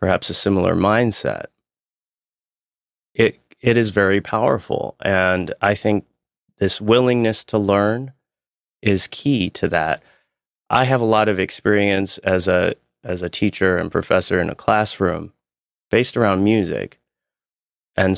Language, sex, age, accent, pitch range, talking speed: English, male, 30-49, American, 90-105 Hz, 130 wpm